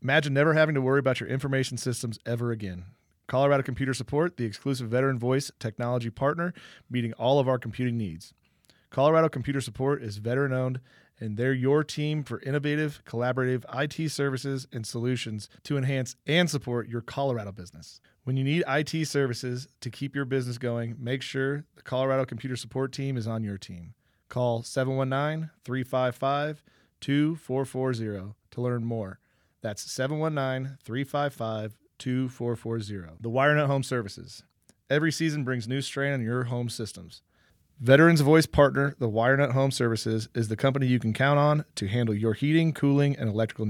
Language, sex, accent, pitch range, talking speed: English, male, American, 120-140 Hz, 155 wpm